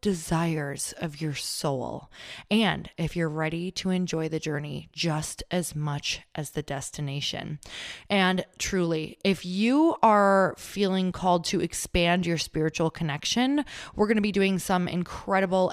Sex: female